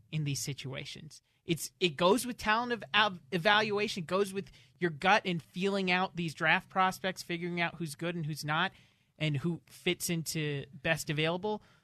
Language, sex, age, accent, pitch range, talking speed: English, male, 30-49, American, 140-185 Hz, 165 wpm